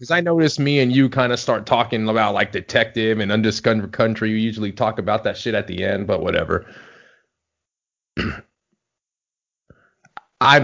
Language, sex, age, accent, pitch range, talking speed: English, male, 30-49, American, 110-130 Hz, 160 wpm